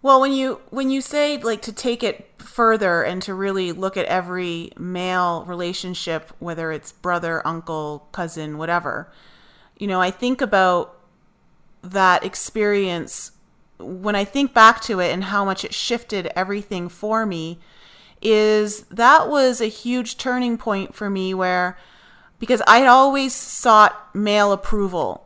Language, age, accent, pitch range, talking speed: English, 30-49, American, 175-210 Hz, 145 wpm